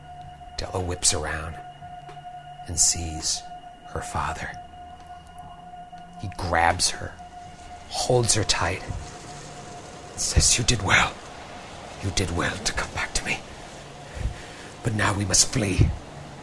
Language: English